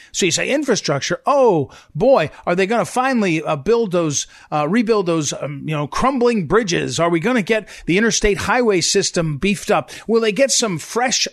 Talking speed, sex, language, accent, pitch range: 200 wpm, male, English, American, 170-240 Hz